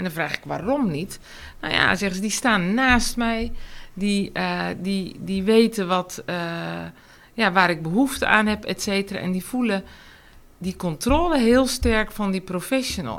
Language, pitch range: Dutch, 180-240 Hz